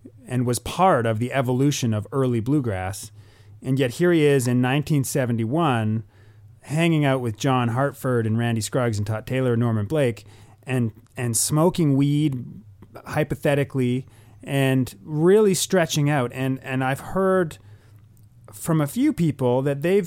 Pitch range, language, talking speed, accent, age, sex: 115-145 Hz, English, 145 wpm, American, 30-49, male